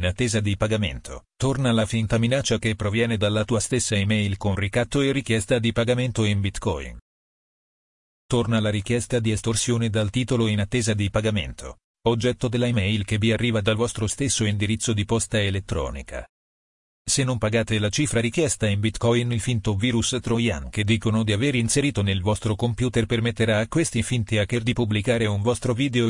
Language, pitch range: Italian, 105-120 Hz